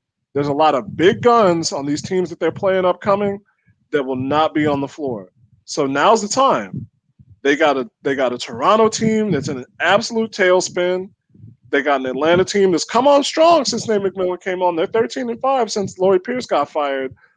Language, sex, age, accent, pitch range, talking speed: English, male, 20-39, American, 145-195 Hz, 195 wpm